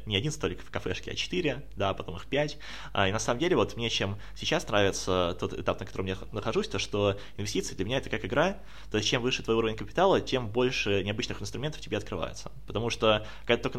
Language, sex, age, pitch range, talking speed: Russian, male, 20-39, 95-120 Hz, 220 wpm